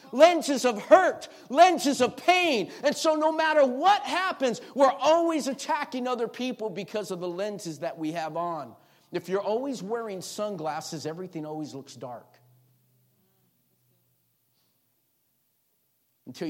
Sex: male